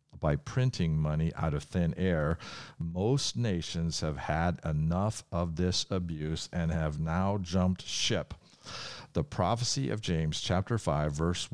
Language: English